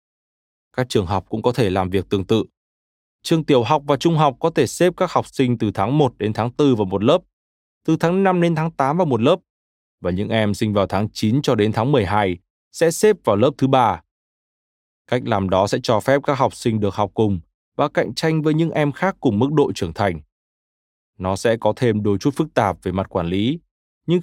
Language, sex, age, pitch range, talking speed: Vietnamese, male, 20-39, 100-150 Hz, 235 wpm